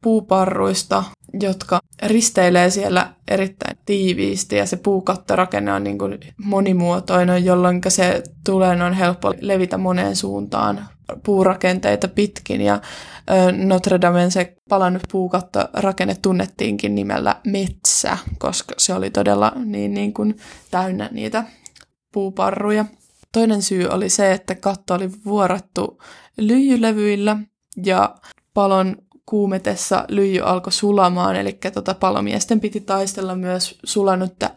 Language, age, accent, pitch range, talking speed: Finnish, 20-39, native, 180-200 Hz, 110 wpm